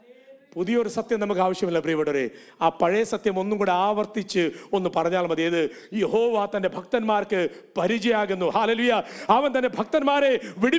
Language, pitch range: English, 190-270 Hz